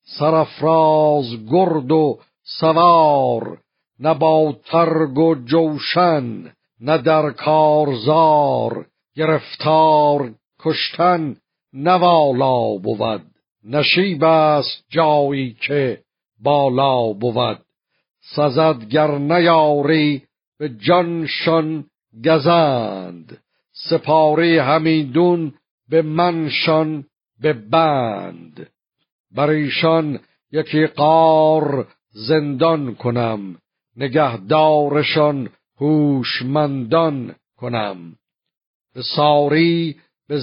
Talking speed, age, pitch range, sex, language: 70 wpm, 60-79, 130-160 Hz, male, Persian